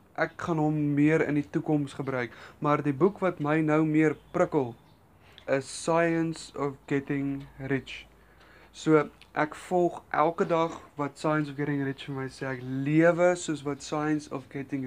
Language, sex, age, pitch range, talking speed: English, male, 20-39, 140-170 Hz, 165 wpm